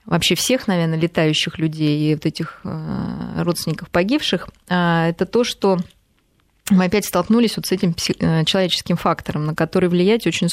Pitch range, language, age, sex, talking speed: 165-195 Hz, Russian, 20-39, female, 150 wpm